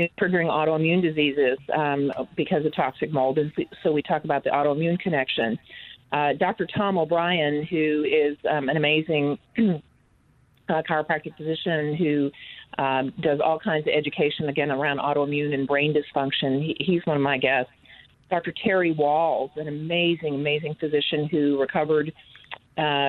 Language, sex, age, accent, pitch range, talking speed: English, female, 40-59, American, 145-170 Hz, 145 wpm